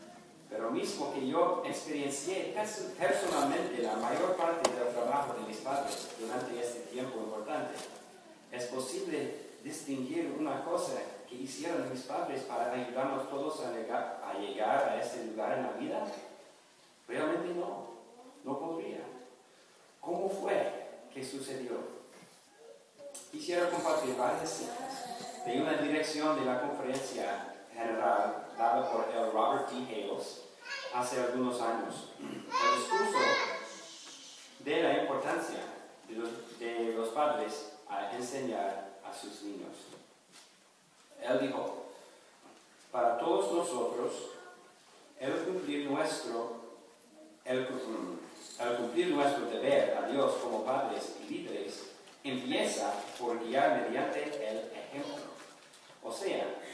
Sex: male